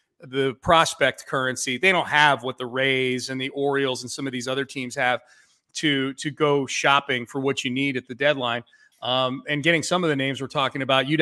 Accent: American